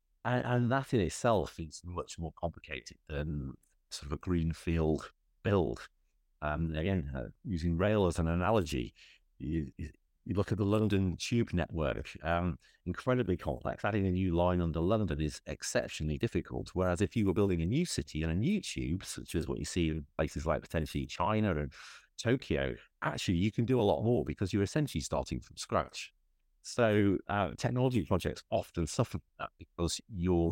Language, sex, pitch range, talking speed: English, male, 75-100 Hz, 175 wpm